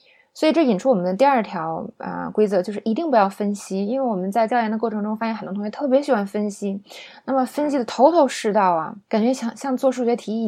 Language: Chinese